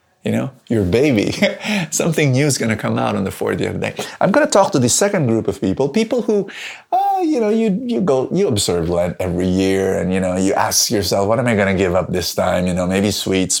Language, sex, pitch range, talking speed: English, male, 105-165 Hz, 250 wpm